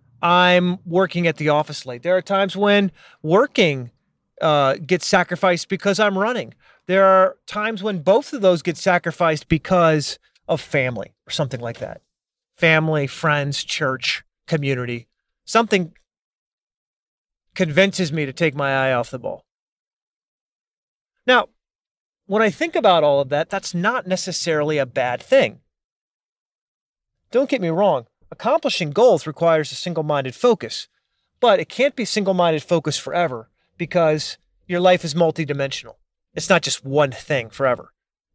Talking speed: 140 wpm